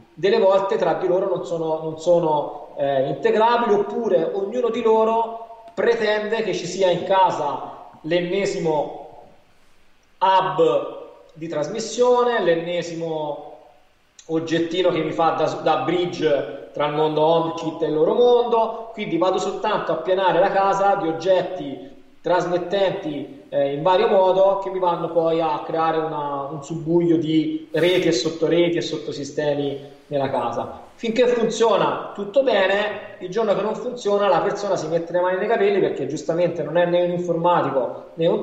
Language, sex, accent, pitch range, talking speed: Italian, male, native, 165-215 Hz, 155 wpm